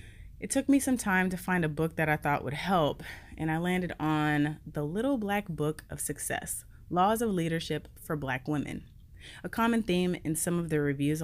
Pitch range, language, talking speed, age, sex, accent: 145-180 Hz, English, 205 wpm, 20-39, female, American